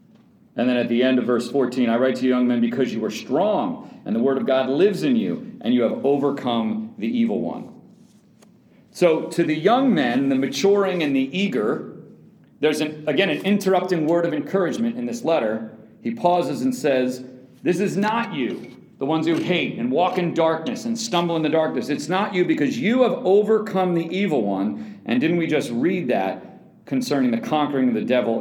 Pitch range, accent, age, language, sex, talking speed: 140-220 Hz, American, 40-59, English, male, 205 wpm